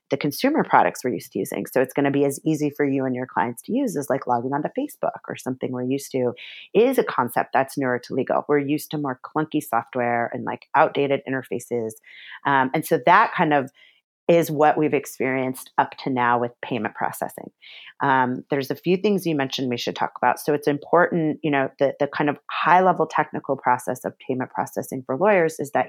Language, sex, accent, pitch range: English, female, American, 130-150 Hz